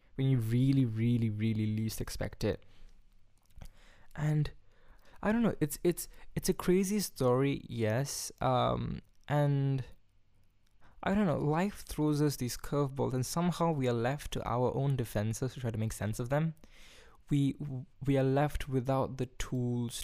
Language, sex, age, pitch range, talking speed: English, male, 20-39, 110-140 Hz, 155 wpm